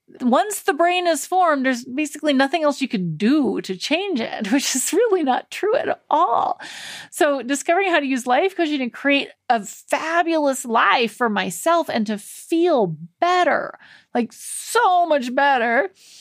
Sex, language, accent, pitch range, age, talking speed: female, English, American, 230-330 Hz, 30-49, 165 wpm